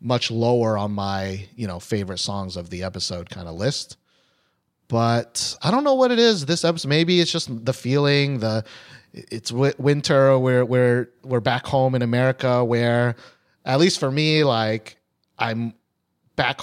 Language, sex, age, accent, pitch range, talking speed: English, male, 30-49, American, 115-170 Hz, 170 wpm